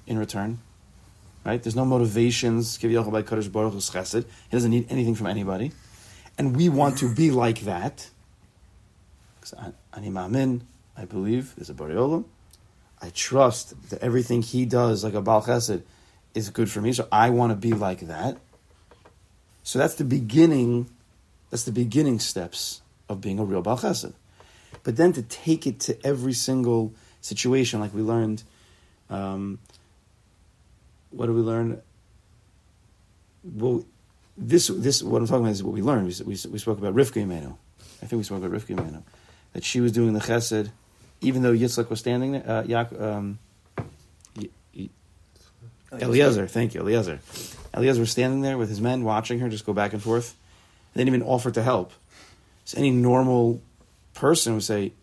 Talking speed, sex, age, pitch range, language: 160 wpm, male, 30-49, 100-120 Hz, English